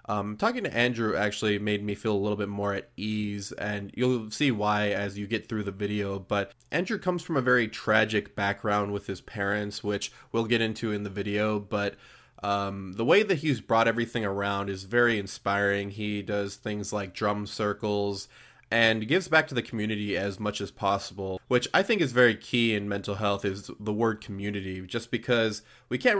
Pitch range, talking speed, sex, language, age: 100-125 Hz, 200 wpm, male, English, 20-39